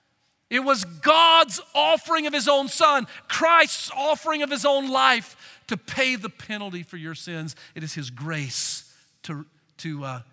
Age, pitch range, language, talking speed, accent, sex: 50-69, 170-285 Hz, English, 165 wpm, American, male